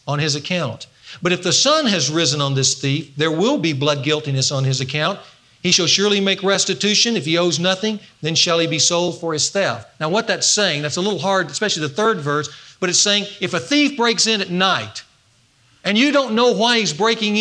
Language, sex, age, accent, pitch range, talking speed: English, male, 40-59, American, 135-205 Hz, 230 wpm